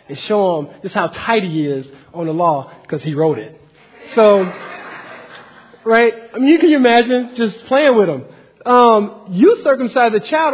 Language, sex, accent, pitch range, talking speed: English, male, American, 200-280 Hz, 180 wpm